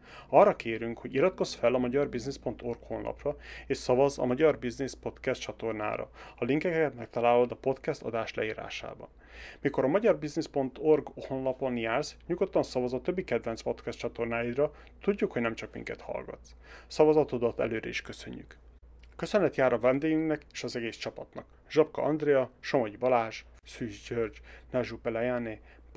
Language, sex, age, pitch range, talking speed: Hungarian, male, 30-49, 115-145 Hz, 140 wpm